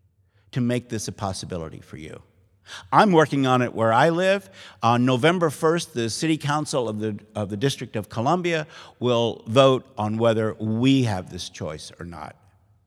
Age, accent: 50-69, American